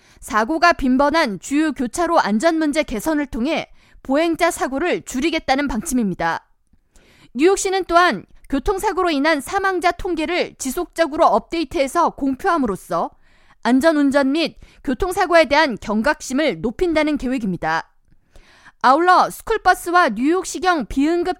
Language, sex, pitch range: Korean, female, 260-350 Hz